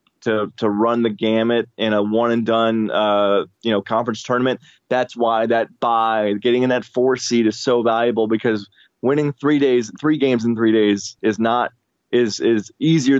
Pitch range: 110-140 Hz